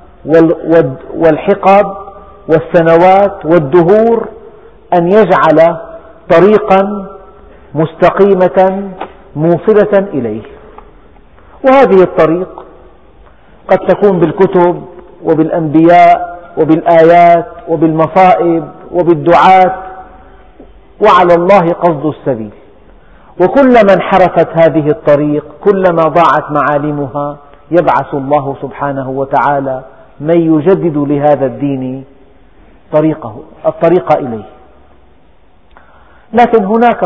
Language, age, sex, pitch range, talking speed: Arabic, 50-69, male, 155-190 Hz, 70 wpm